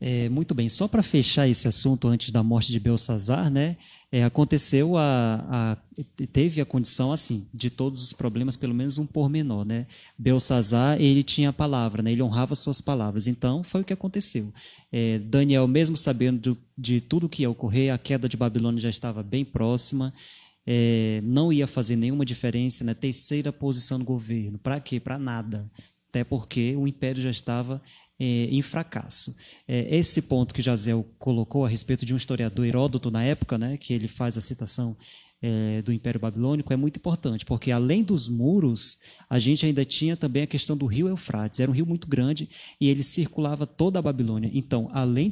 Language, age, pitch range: Portuguese, 20-39, 120-145 Hz